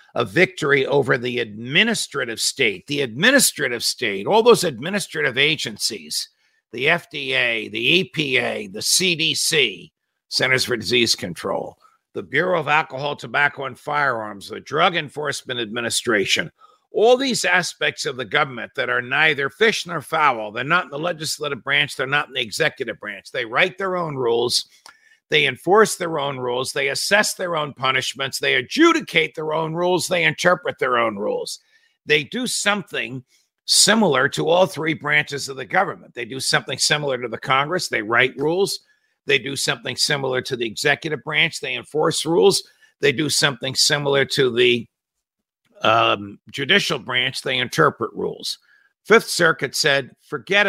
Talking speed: 155 wpm